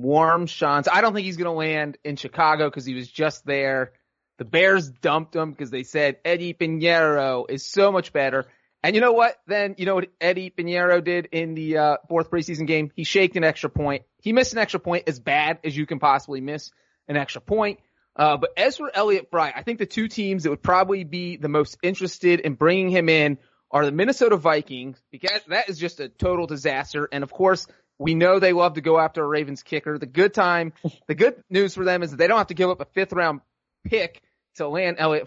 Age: 30-49